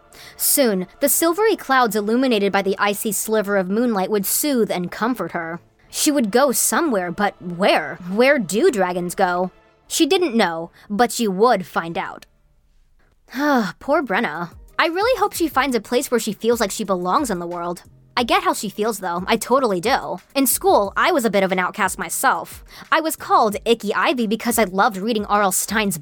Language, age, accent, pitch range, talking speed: English, 20-39, American, 195-285 Hz, 190 wpm